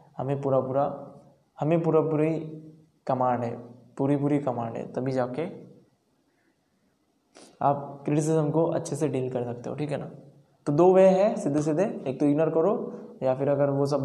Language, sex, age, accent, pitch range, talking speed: Hindi, male, 20-39, native, 135-155 Hz, 175 wpm